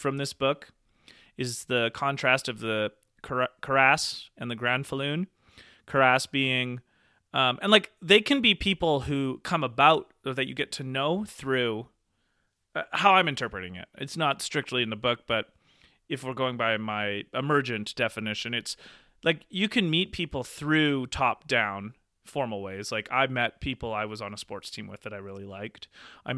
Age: 30-49